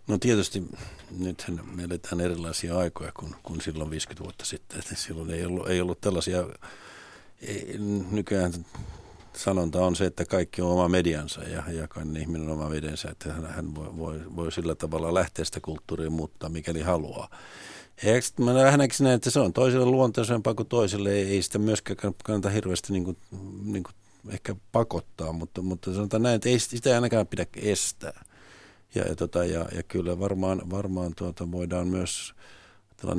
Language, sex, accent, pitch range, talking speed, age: Finnish, male, native, 85-105 Hz, 165 wpm, 50-69